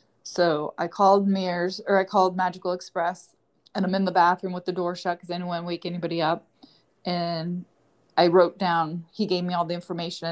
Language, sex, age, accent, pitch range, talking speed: English, female, 20-39, American, 170-195 Hz, 210 wpm